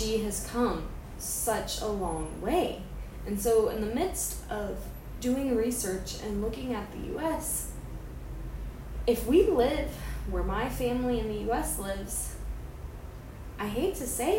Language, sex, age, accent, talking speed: English, female, 10-29, American, 140 wpm